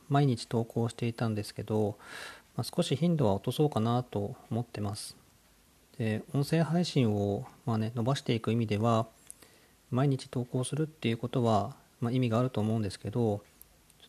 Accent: native